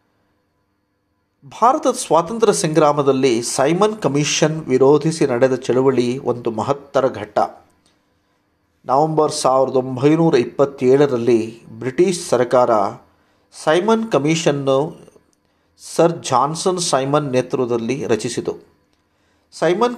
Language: Kannada